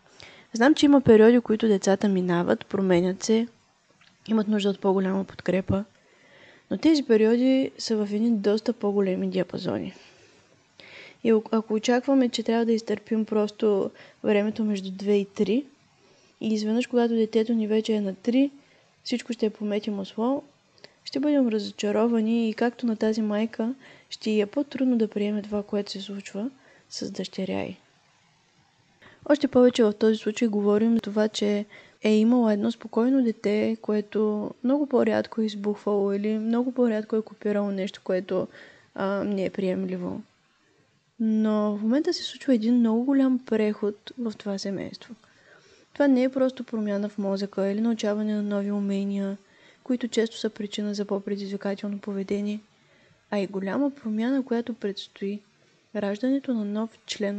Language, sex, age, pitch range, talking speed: Bulgarian, female, 20-39, 205-235 Hz, 145 wpm